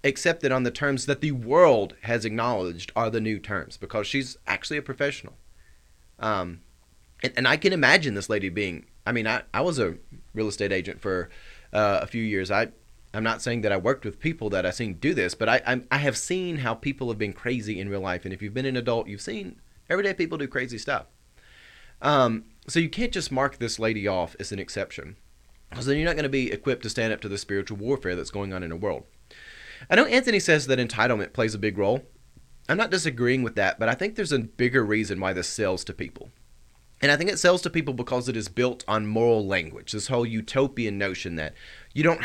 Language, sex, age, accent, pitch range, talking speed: English, male, 30-49, American, 100-135 Hz, 230 wpm